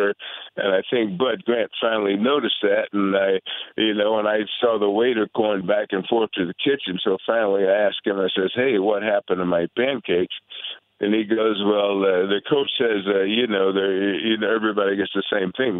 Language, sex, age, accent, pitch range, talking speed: English, male, 50-69, American, 95-115 Hz, 210 wpm